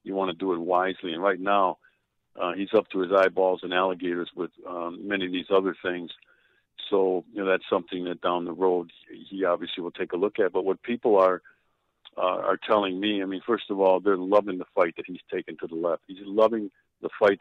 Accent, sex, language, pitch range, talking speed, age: American, male, English, 90-105 Hz, 230 wpm, 50-69